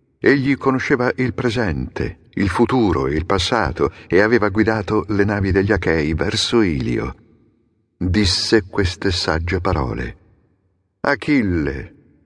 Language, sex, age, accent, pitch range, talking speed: Italian, male, 50-69, native, 95-130 Hz, 115 wpm